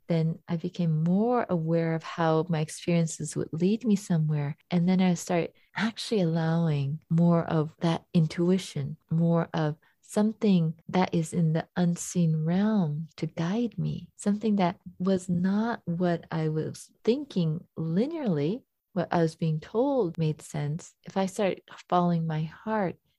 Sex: female